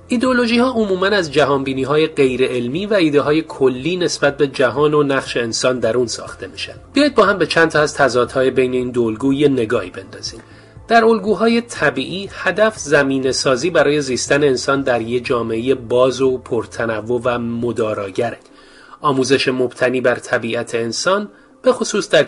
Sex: male